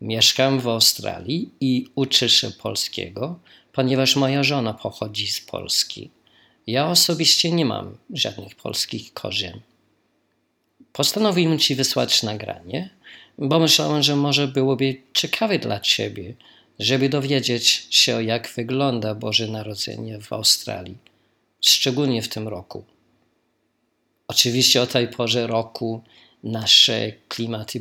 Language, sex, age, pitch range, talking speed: Polish, male, 50-69, 115-135 Hz, 110 wpm